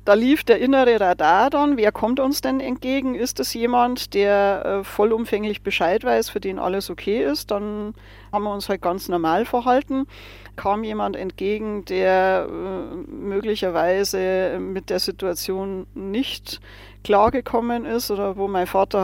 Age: 40-59